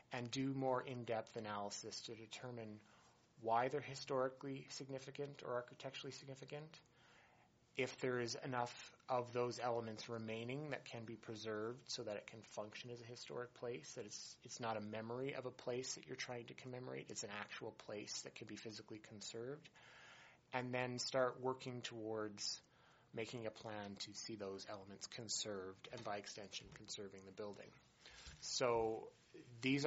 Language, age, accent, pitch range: English, 30-49, American, 105-125 Hz